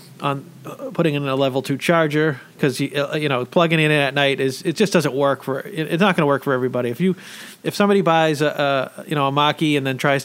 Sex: male